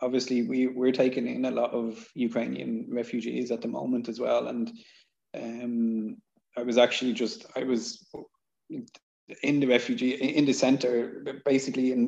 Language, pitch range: English, 120-130 Hz